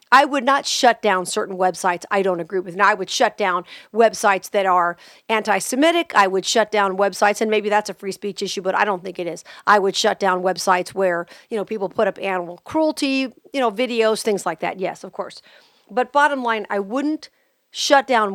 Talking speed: 220 wpm